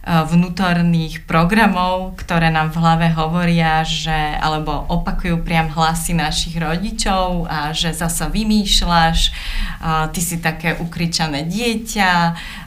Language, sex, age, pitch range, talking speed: Slovak, female, 30-49, 160-180 Hz, 110 wpm